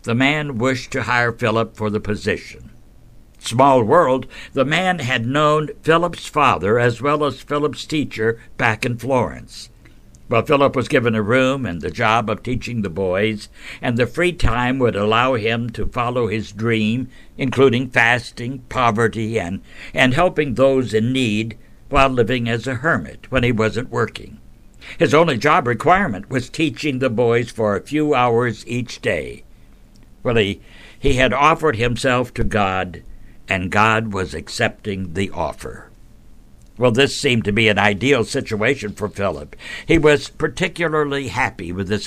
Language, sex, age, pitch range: English, male, 60-79, 110-135 Hz